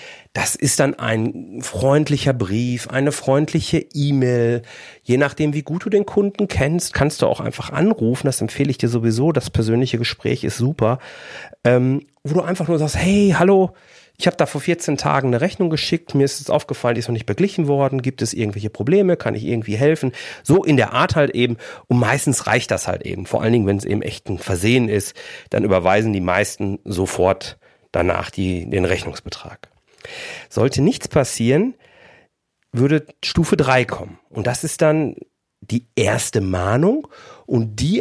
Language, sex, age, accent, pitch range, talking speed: German, male, 40-59, German, 115-165 Hz, 180 wpm